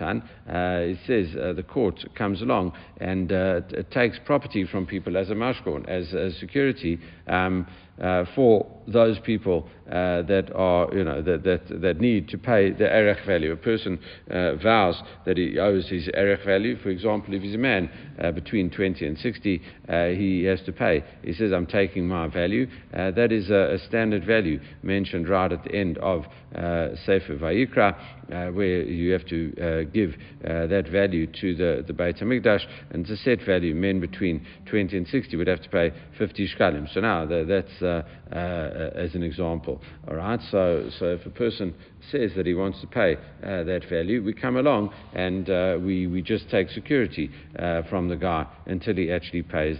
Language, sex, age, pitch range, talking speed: English, male, 60-79, 85-100 Hz, 195 wpm